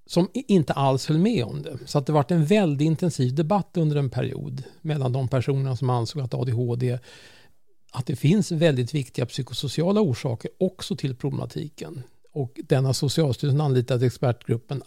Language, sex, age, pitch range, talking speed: Swedish, male, 50-69, 130-160 Hz, 165 wpm